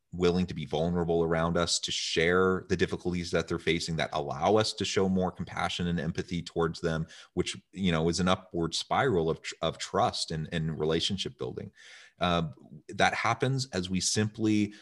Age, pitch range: 30-49, 80-100 Hz